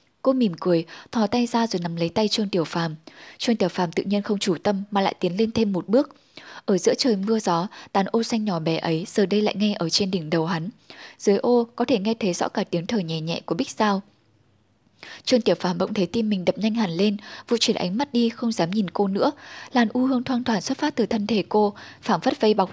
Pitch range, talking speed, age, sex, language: 180-230 Hz, 260 wpm, 10-29, female, Vietnamese